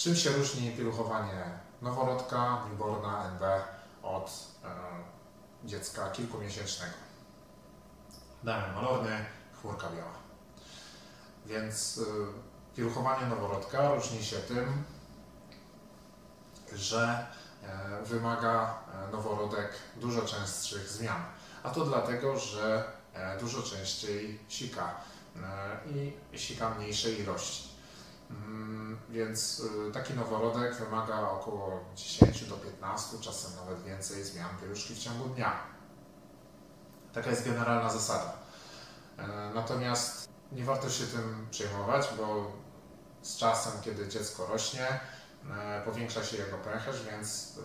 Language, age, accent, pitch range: Polish, 30-49, native, 100-115 Hz